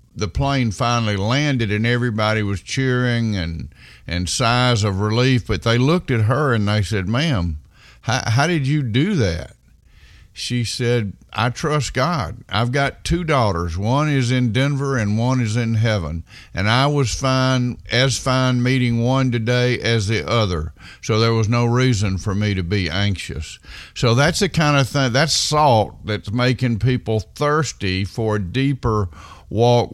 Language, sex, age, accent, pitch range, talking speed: English, male, 50-69, American, 105-130 Hz, 170 wpm